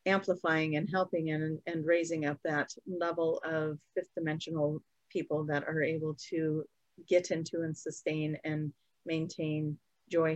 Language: English